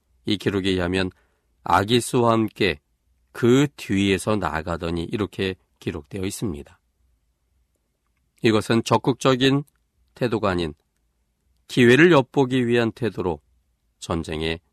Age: 40-59